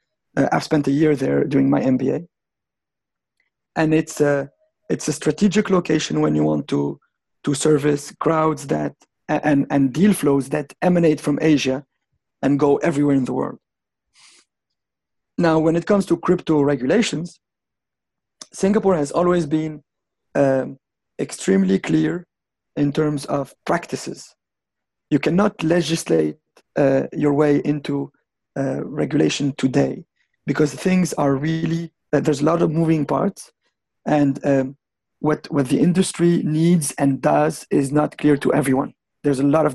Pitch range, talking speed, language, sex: 140-170 Hz, 145 wpm, English, male